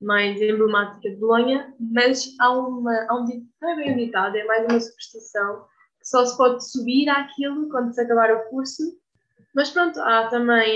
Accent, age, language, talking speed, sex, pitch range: Brazilian, 10-29, Portuguese, 160 wpm, female, 210-250 Hz